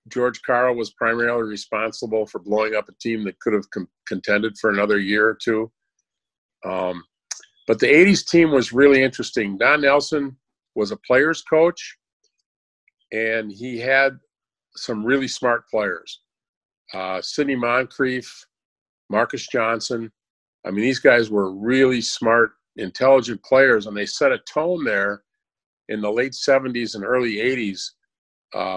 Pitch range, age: 110-135 Hz, 50-69